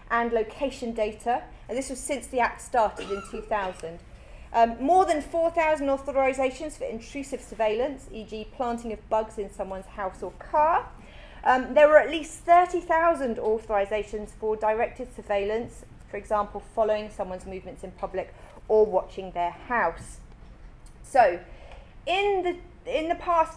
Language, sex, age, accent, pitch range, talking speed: English, female, 30-49, British, 205-295 Hz, 145 wpm